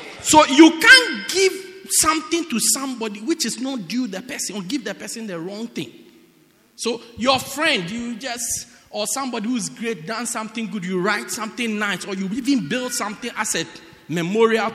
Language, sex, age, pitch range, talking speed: English, male, 50-69, 185-275 Hz, 185 wpm